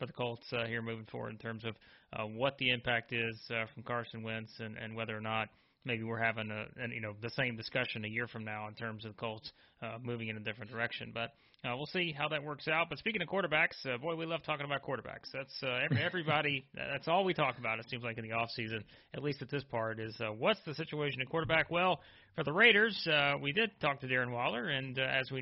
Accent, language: American, English